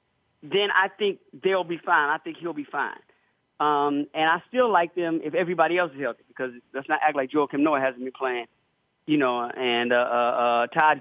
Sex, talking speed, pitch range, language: male, 215 wpm, 155-210 Hz, English